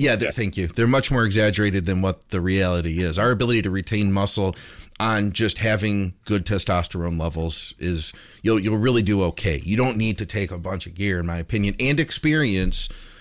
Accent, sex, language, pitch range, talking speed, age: American, male, English, 95-120 Hz, 195 wpm, 30-49